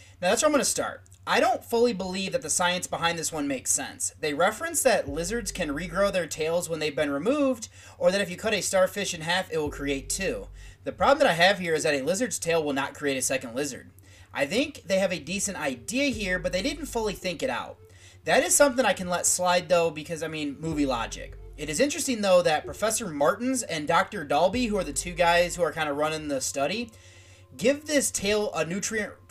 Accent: American